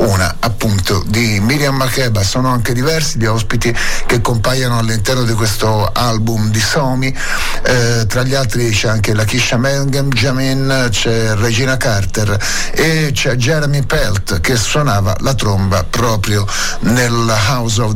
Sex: male